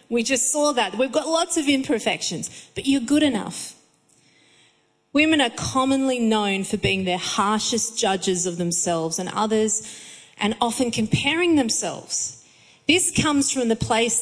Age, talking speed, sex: 30-49, 150 wpm, female